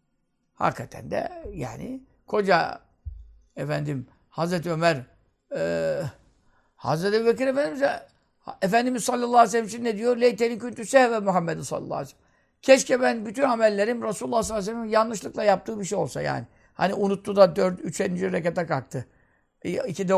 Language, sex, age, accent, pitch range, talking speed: Turkish, male, 60-79, native, 165-235 Hz, 140 wpm